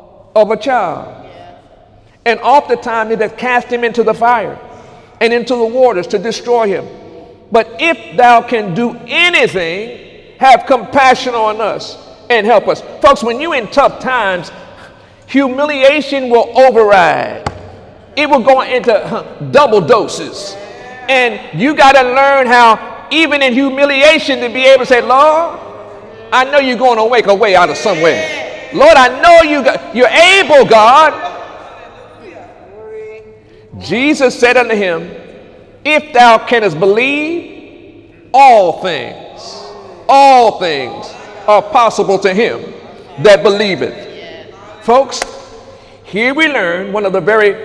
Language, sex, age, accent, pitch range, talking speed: English, male, 50-69, American, 215-275 Hz, 135 wpm